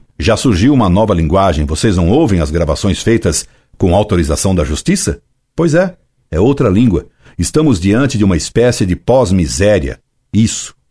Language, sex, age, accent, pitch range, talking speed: Portuguese, male, 60-79, Brazilian, 85-115 Hz, 155 wpm